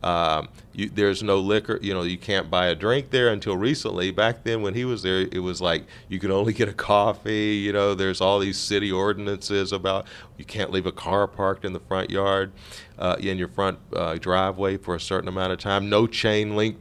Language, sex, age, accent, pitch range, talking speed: English, male, 40-59, American, 90-105 Hz, 220 wpm